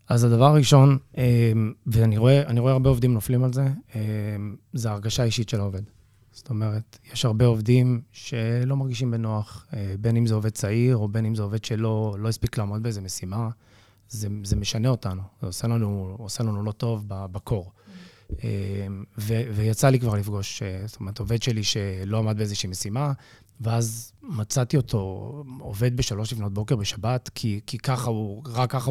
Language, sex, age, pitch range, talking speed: Hebrew, male, 20-39, 105-130 Hz, 160 wpm